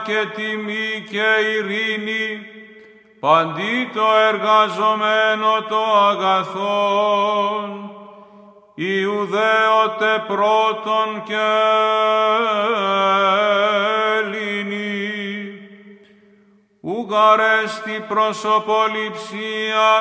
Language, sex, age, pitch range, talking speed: Greek, male, 50-69, 205-220 Hz, 45 wpm